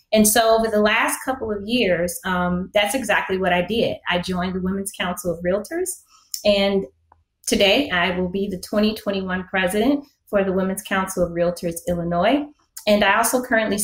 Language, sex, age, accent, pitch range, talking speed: English, female, 20-39, American, 175-215 Hz, 175 wpm